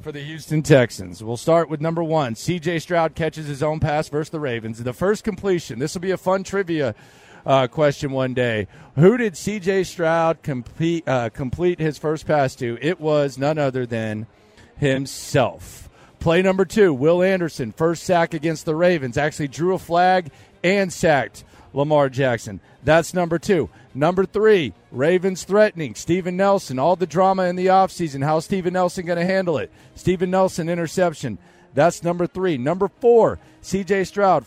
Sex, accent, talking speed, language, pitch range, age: male, American, 170 wpm, English, 140-180 Hz, 40-59